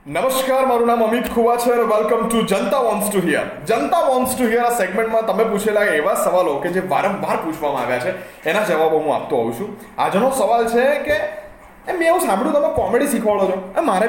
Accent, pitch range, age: native, 145-235 Hz, 20-39